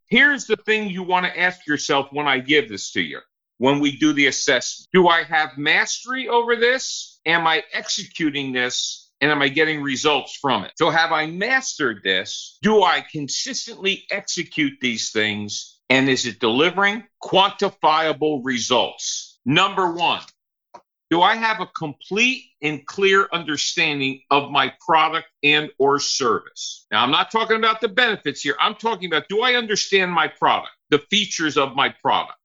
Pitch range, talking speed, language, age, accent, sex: 145-215 Hz, 165 wpm, English, 50-69, American, male